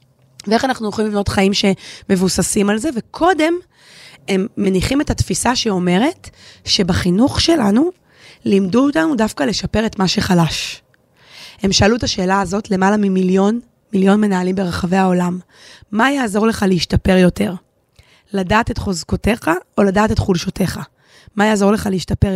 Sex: female